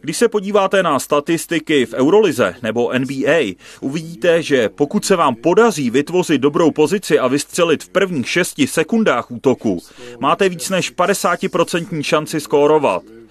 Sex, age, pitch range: male, 30-49, 145-175 Hz